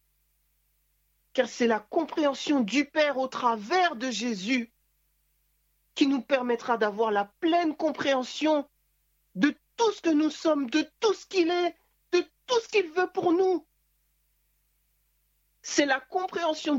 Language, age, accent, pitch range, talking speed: French, 40-59, French, 245-335 Hz, 135 wpm